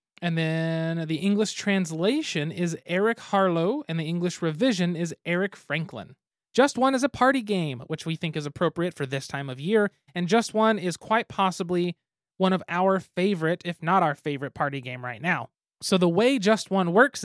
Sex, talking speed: male, 190 wpm